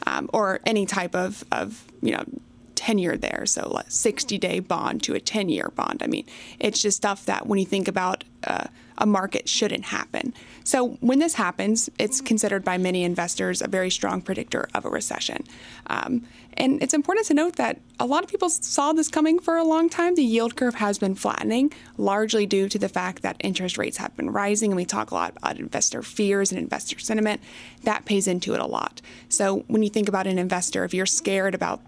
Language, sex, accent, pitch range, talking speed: English, female, American, 190-245 Hz, 210 wpm